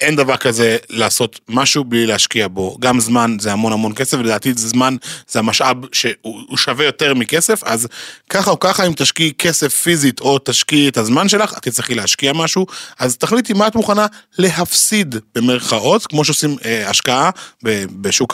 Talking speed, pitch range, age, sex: 165 wpm, 125-200 Hz, 30-49, male